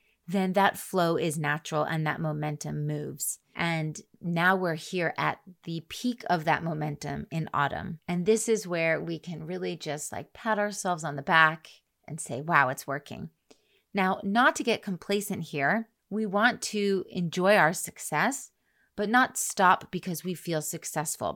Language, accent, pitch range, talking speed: English, American, 165-200 Hz, 165 wpm